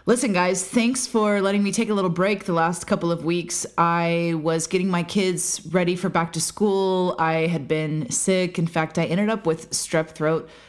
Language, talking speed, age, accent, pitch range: English, 210 wpm, 30-49, American, 160-210 Hz